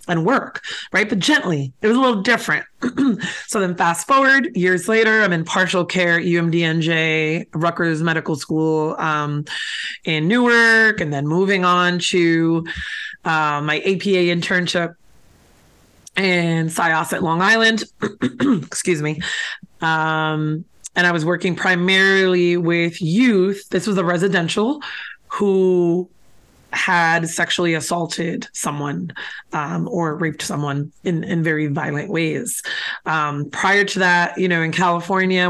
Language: English